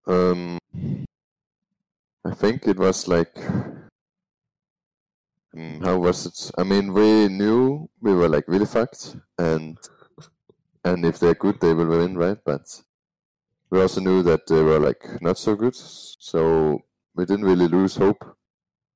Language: Danish